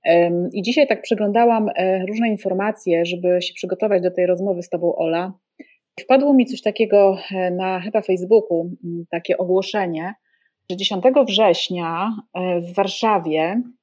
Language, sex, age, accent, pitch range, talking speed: Polish, female, 30-49, native, 180-215 Hz, 125 wpm